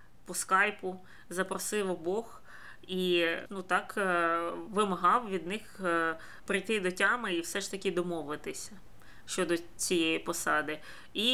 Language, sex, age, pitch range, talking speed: Ukrainian, female, 20-39, 175-200 Hz, 110 wpm